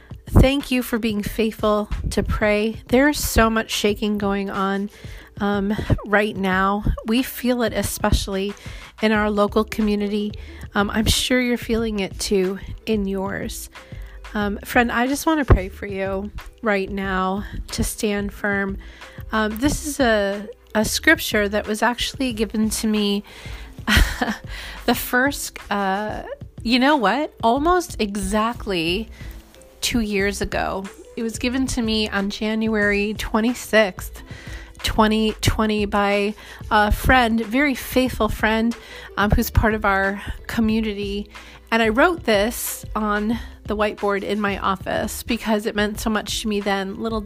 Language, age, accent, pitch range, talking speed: English, 30-49, American, 205-230 Hz, 140 wpm